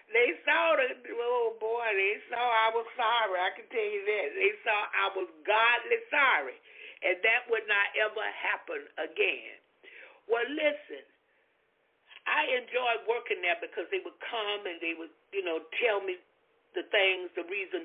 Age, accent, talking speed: 60-79, American, 165 wpm